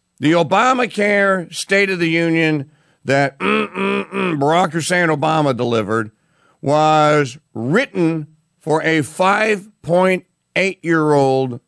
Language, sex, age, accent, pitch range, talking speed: English, male, 50-69, American, 130-175 Hz, 100 wpm